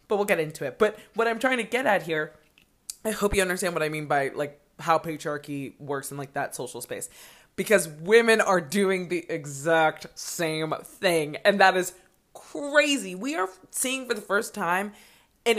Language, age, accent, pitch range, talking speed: English, 20-39, American, 165-230 Hz, 195 wpm